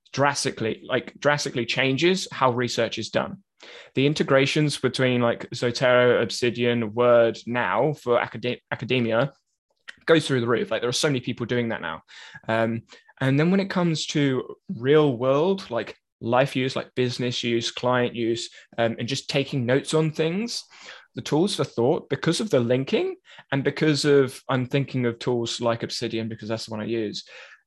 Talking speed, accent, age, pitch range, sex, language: 170 wpm, British, 20-39, 120-145 Hz, male, English